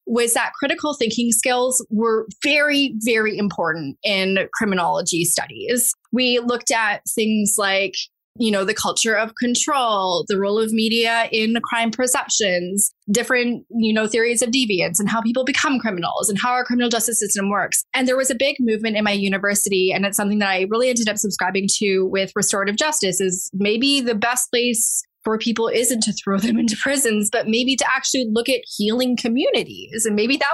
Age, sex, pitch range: 20-39, female, 205-260 Hz